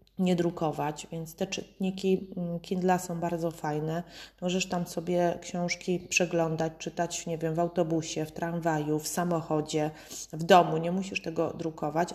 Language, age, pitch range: Polish, 30-49, 160-185 Hz